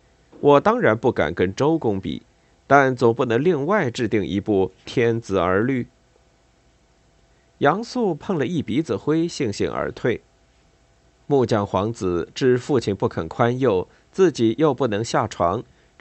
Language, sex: Chinese, male